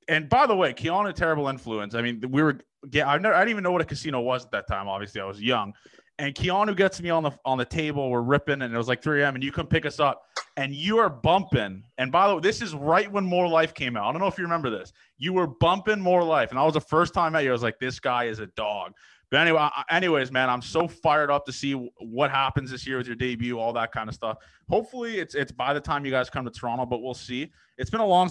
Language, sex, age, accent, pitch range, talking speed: English, male, 20-39, American, 125-160 Hz, 290 wpm